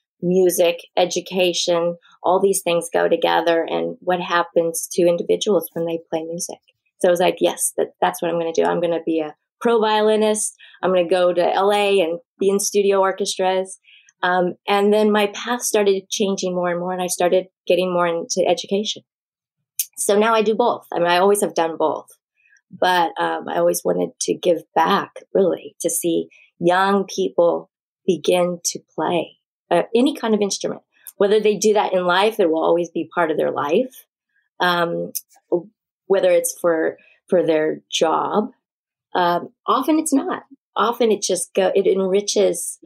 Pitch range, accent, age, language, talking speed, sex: 175-210 Hz, American, 20-39, English, 175 wpm, female